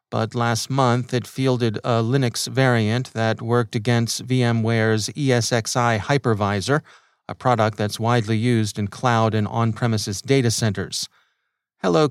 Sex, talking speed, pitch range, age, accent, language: male, 130 wpm, 110-130 Hz, 40-59, American, English